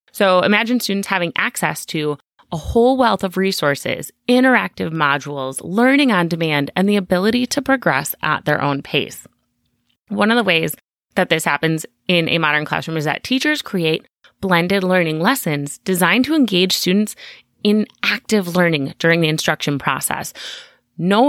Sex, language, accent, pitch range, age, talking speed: female, English, American, 160-225 Hz, 30-49, 155 wpm